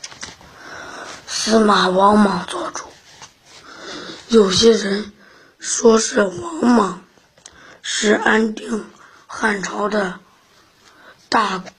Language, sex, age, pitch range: Chinese, female, 20-39, 205-245 Hz